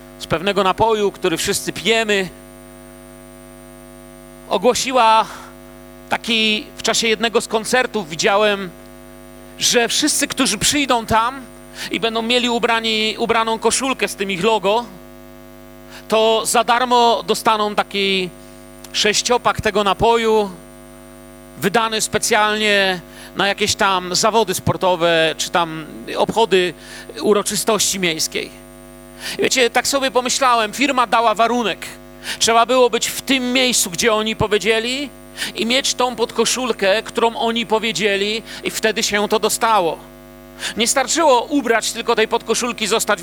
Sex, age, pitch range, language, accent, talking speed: male, 40-59, 205-240 Hz, Polish, native, 115 wpm